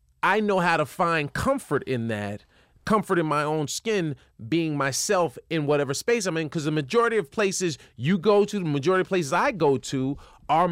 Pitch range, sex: 130-180 Hz, male